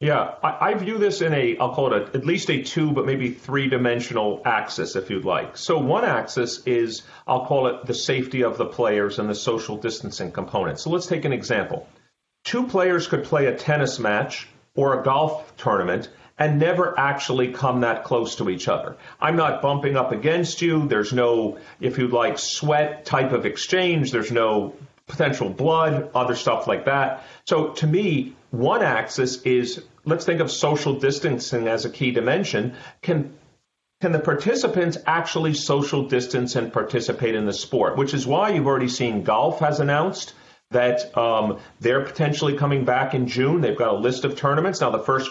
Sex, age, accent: male, 40-59, American